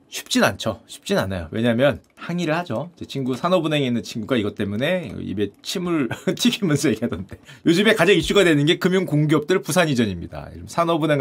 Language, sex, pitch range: Korean, male, 150-230 Hz